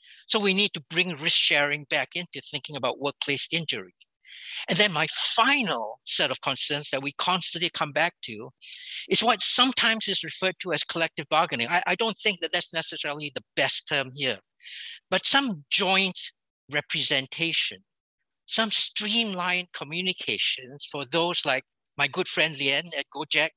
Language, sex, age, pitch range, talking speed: English, male, 60-79, 145-190 Hz, 160 wpm